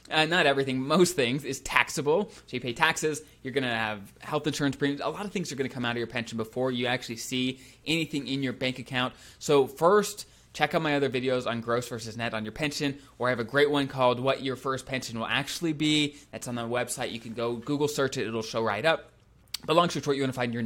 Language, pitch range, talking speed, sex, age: English, 120-150 Hz, 255 wpm, male, 20-39